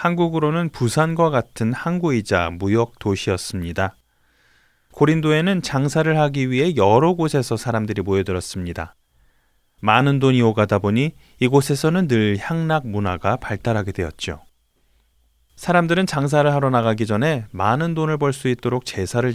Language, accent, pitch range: Korean, native, 100-150 Hz